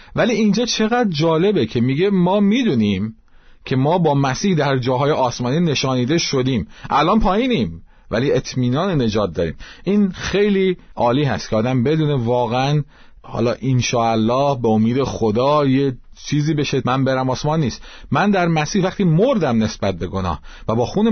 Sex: male